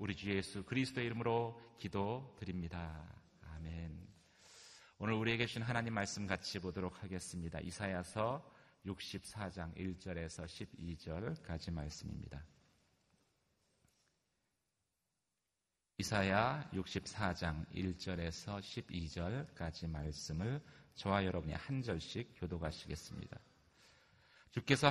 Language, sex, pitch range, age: Korean, male, 90-110 Hz, 40-59